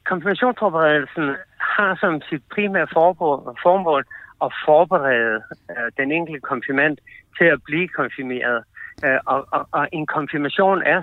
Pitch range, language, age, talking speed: 135-180 Hz, Danish, 60-79, 105 wpm